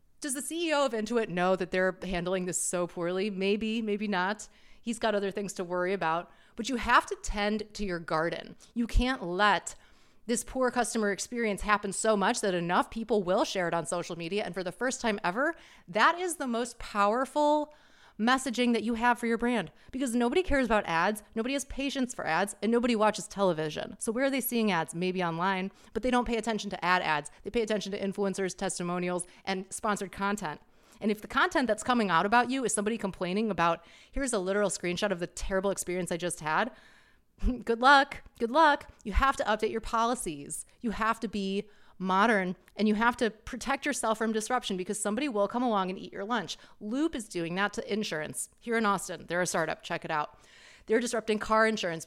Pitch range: 185-240 Hz